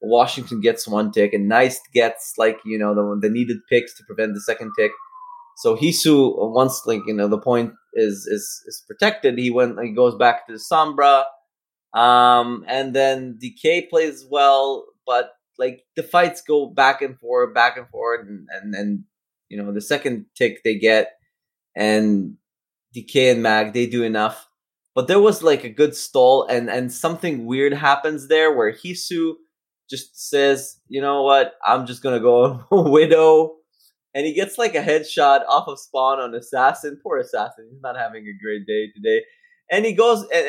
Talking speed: 180 wpm